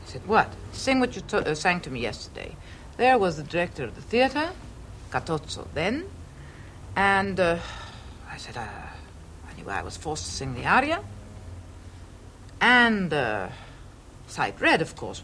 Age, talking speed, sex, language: 60-79, 150 wpm, female, English